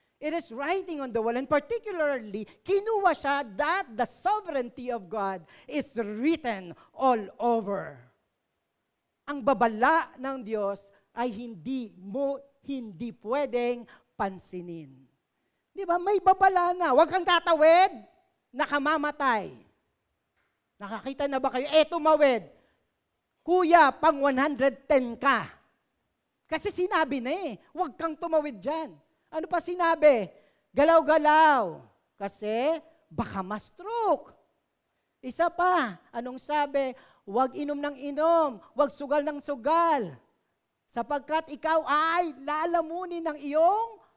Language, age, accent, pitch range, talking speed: Filipino, 40-59, native, 240-330 Hz, 110 wpm